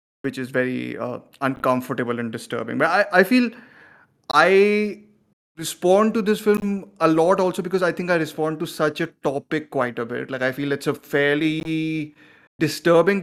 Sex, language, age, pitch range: male, Tamil, 30-49, 130-160 Hz